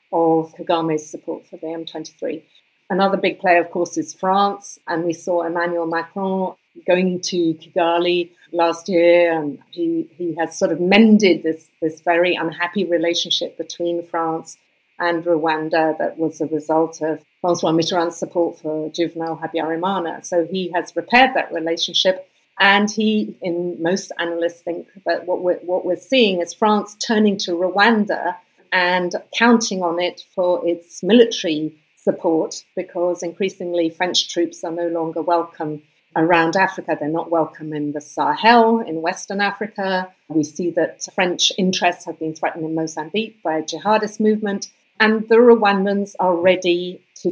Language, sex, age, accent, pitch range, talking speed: English, female, 50-69, British, 165-190 Hz, 155 wpm